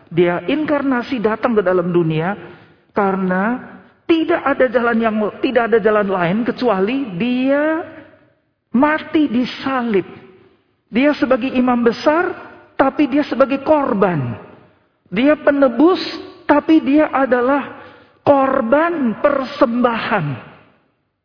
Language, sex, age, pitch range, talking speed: Indonesian, male, 50-69, 185-260 Hz, 95 wpm